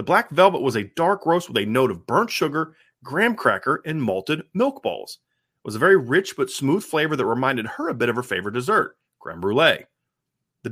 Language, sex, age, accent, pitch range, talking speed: English, male, 30-49, American, 125-180 Hz, 220 wpm